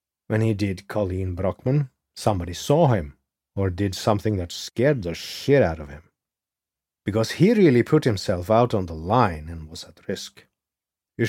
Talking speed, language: 170 wpm, English